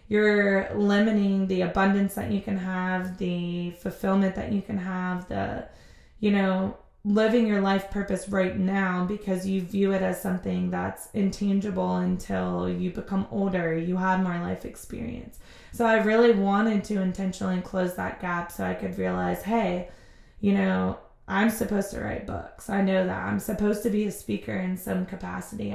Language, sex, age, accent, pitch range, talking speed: English, female, 20-39, American, 185-210 Hz, 170 wpm